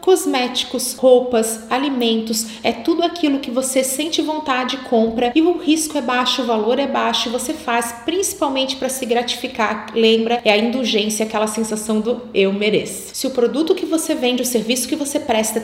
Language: Portuguese